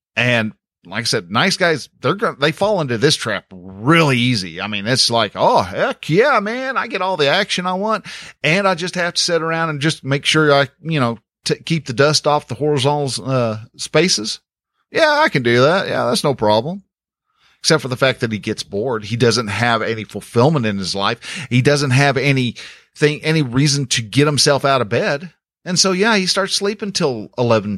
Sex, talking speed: male, 205 wpm